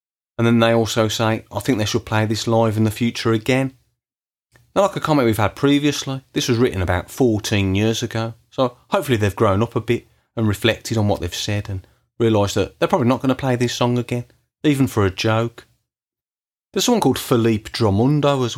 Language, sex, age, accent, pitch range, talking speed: English, male, 30-49, British, 105-130 Hz, 210 wpm